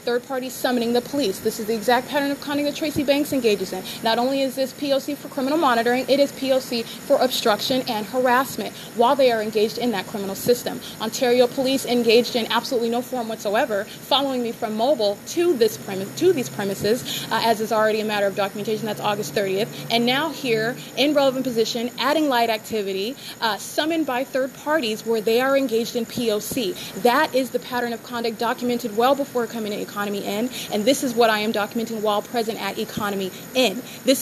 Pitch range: 220-260 Hz